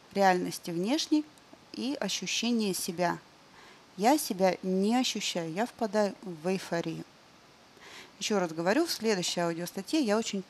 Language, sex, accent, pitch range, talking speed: Russian, female, native, 185-235 Hz, 120 wpm